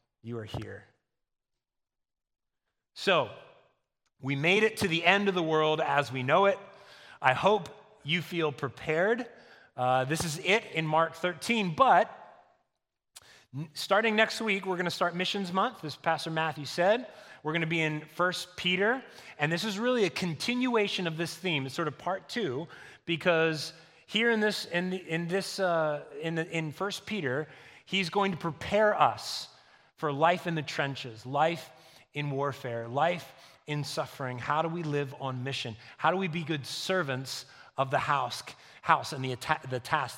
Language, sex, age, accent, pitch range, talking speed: English, male, 30-49, American, 130-180 Hz, 170 wpm